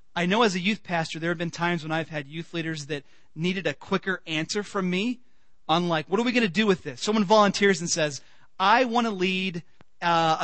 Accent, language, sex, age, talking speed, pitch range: American, English, male, 30-49, 235 wpm, 155-210 Hz